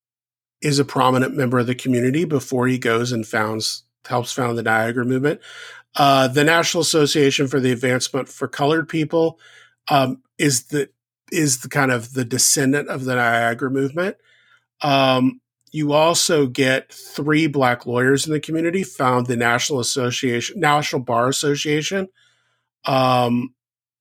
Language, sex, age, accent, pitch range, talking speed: English, male, 40-59, American, 120-155 Hz, 145 wpm